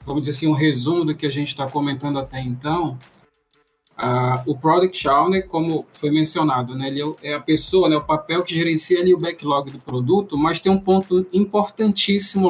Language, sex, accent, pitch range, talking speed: Portuguese, male, Brazilian, 145-180 Hz, 195 wpm